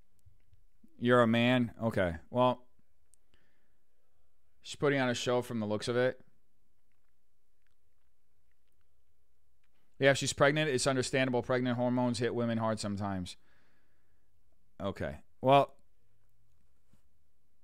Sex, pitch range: male, 100-130 Hz